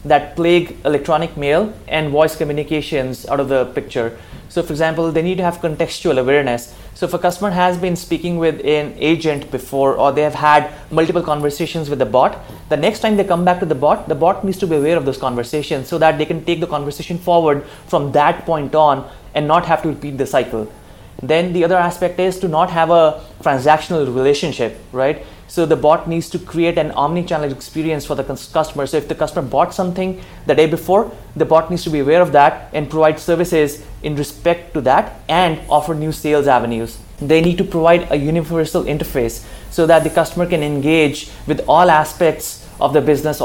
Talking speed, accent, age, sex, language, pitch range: 205 wpm, Indian, 30-49, male, English, 145-170 Hz